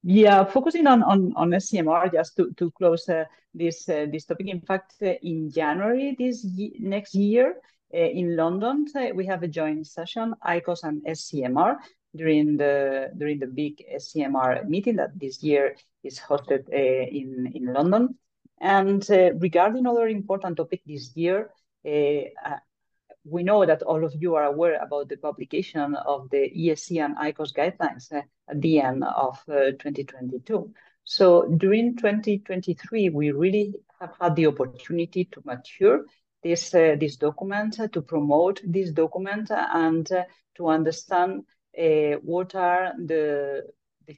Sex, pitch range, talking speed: female, 150-195 Hz, 155 wpm